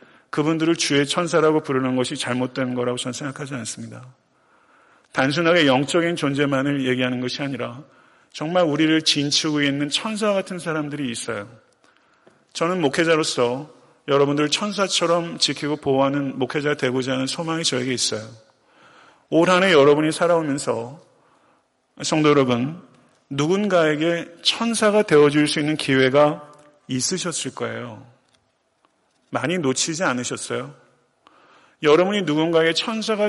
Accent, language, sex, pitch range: native, Korean, male, 130-160 Hz